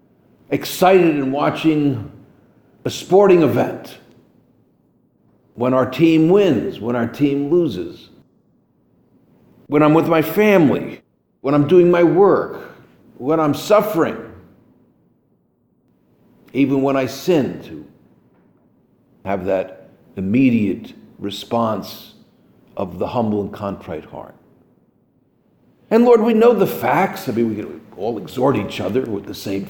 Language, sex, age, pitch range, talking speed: English, male, 50-69, 115-180 Hz, 120 wpm